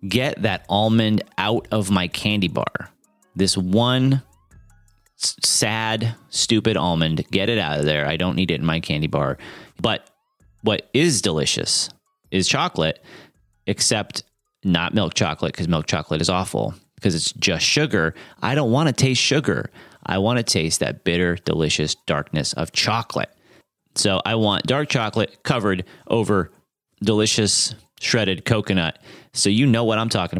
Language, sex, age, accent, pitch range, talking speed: English, male, 30-49, American, 85-110 Hz, 155 wpm